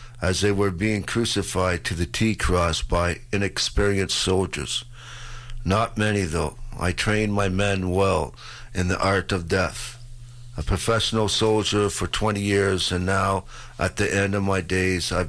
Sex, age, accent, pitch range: male, 50-69, American, 95-115 Hz